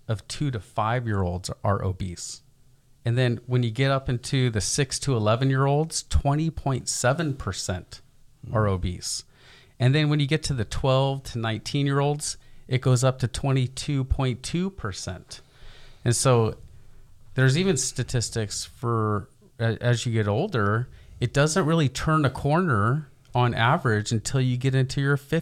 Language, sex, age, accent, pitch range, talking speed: English, male, 40-59, American, 110-135 Hz, 135 wpm